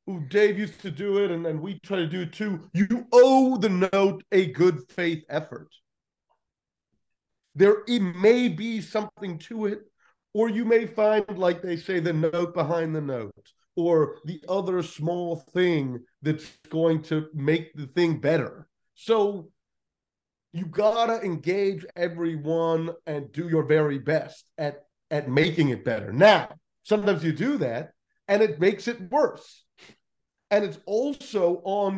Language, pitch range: English, 155-205 Hz